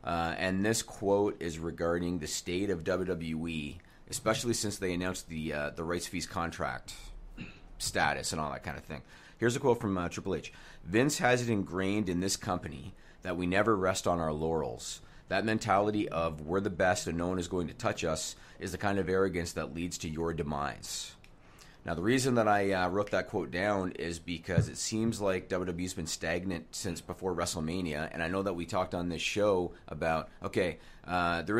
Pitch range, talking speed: 85-100 Hz, 200 wpm